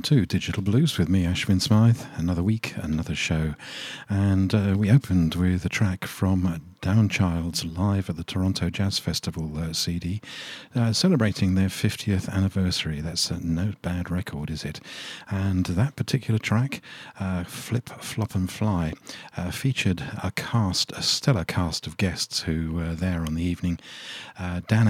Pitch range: 90-110 Hz